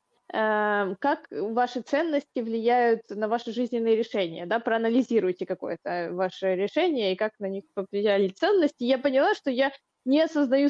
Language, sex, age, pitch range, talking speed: Russian, female, 20-39, 220-260 Hz, 140 wpm